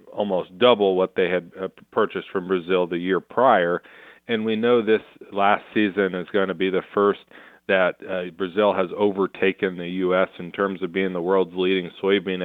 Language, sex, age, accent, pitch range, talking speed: English, male, 40-59, American, 90-95 Hz, 185 wpm